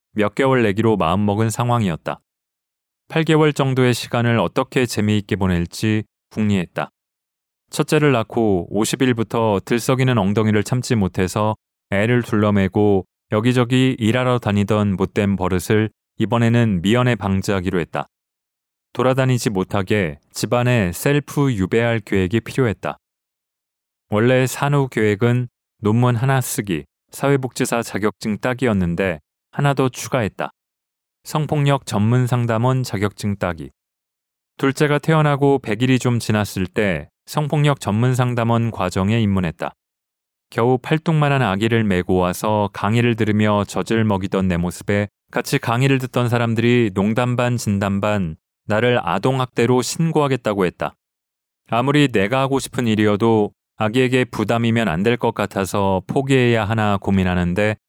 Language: Korean